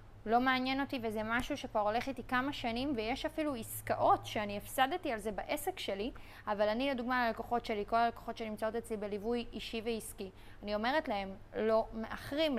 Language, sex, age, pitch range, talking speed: Hebrew, female, 20-39, 215-245 Hz, 170 wpm